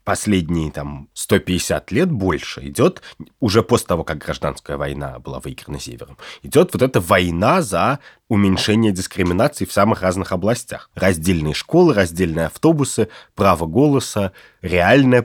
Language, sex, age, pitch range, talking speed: Russian, male, 20-39, 85-115 Hz, 125 wpm